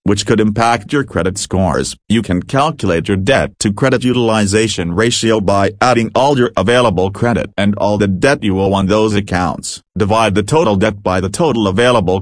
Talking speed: 185 wpm